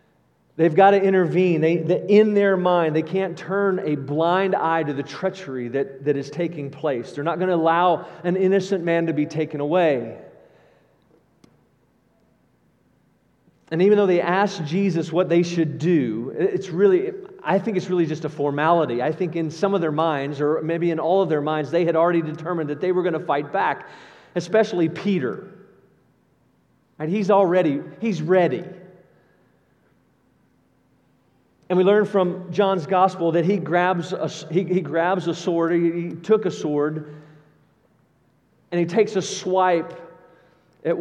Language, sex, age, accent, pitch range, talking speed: English, male, 40-59, American, 160-190 Hz, 165 wpm